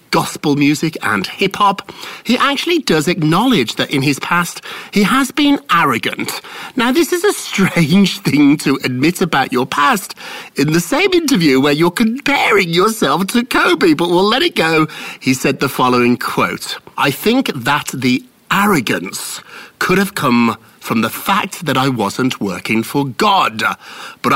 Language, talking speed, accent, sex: English, 160 wpm, British, male